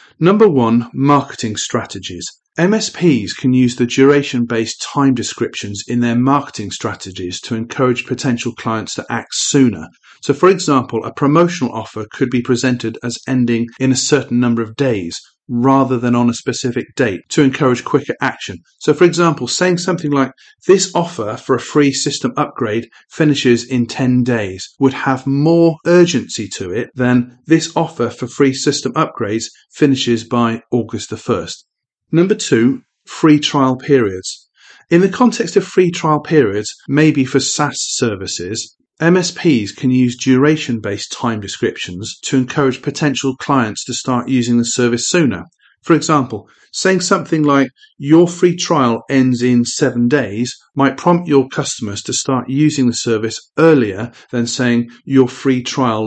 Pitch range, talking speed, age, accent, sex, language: 120-150 Hz, 155 wpm, 40-59, British, male, English